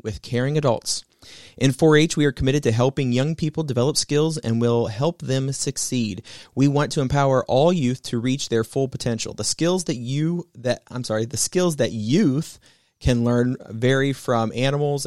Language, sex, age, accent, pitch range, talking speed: English, male, 30-49, American, 115-145 Hz, 185 wpm